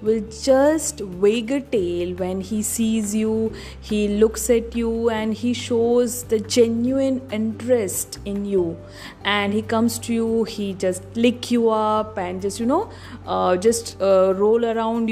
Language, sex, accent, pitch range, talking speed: English, female, Indian, 200-240 Hz, 160 wpm